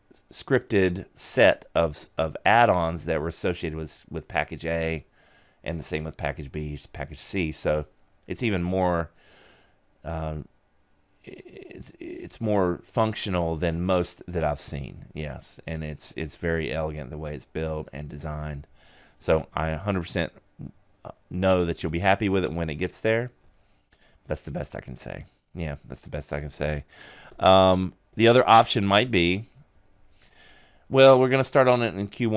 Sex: male